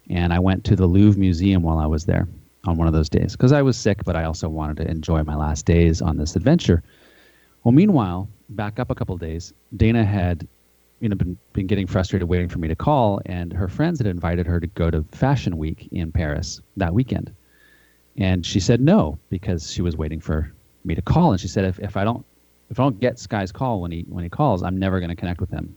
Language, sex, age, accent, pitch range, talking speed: English, male, 30-49, American, 85-110 Hz, 245 wpm